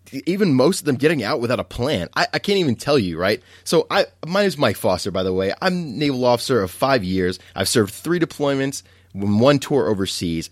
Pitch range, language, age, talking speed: 95-130 Hz, English, 20-39, 220 wpm